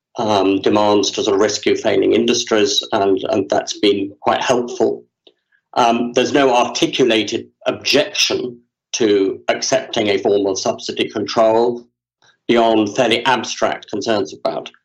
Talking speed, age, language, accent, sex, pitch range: 125 wpm, 50-69, English, British, male, 105-125 Hz